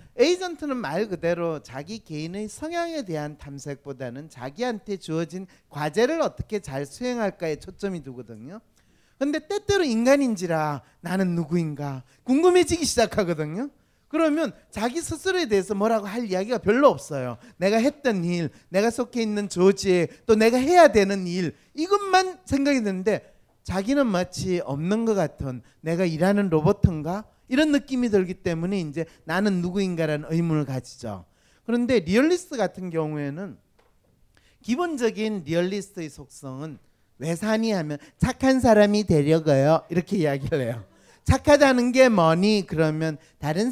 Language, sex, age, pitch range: Korean, male, 40-59, 160-250 Hz